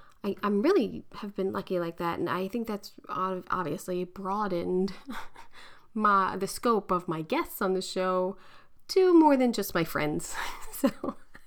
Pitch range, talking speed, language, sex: 185-235 Hz, 155 wpm, English, female